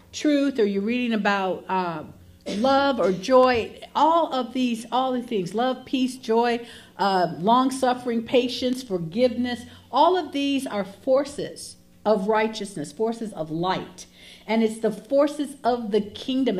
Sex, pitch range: female, 210-270 Hz